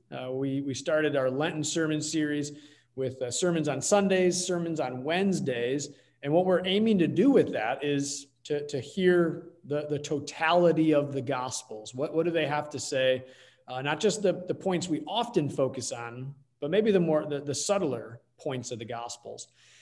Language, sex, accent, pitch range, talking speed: English, male, American, 135-170 Hz, 190 wpm